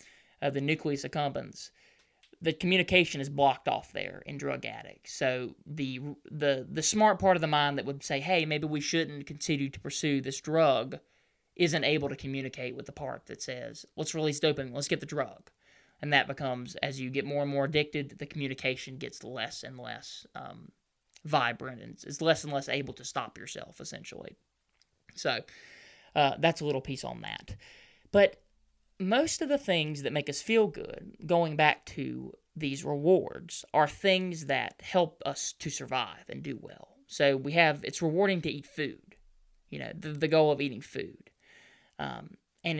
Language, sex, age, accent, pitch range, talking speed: English, male, 20-39, American, 140-175 Hz, 180 wpm